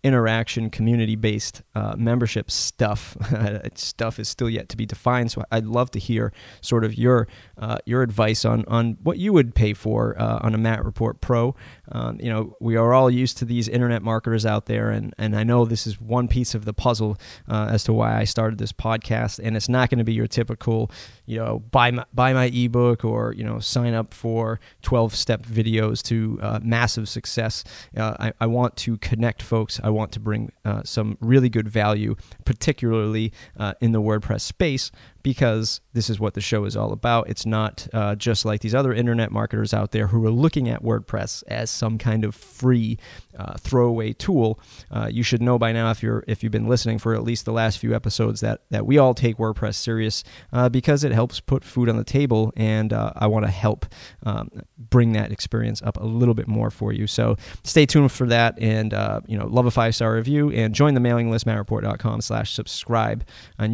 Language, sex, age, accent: English, male, 20-39, American